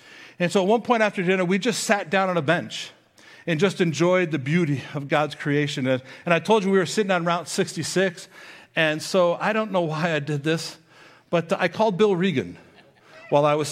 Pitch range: 150-195 Hz